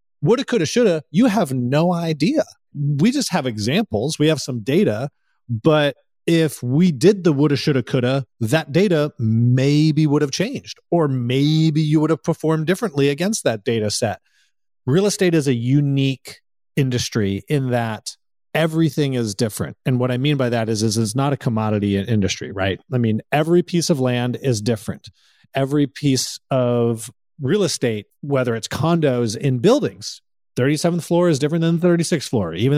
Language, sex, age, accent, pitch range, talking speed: English, male, 30-49, American, 120-160 Hz, 165 wpm